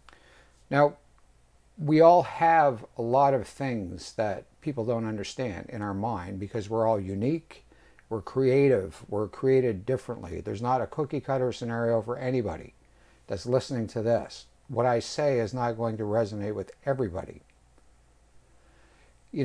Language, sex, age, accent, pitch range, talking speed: English, male, 60-79, American, 100-130 Hz, 140 wpm